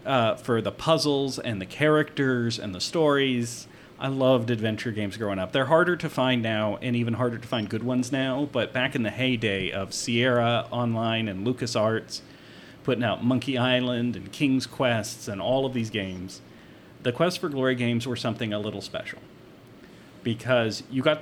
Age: 40-59